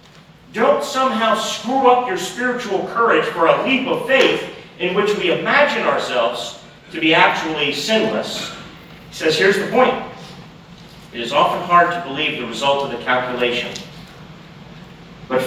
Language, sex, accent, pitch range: English, male, American, 155-220 Hz